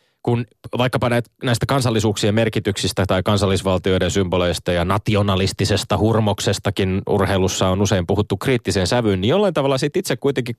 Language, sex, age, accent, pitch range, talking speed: Finnish, male, 20-39, native, 95-120 Hz, 135 wpm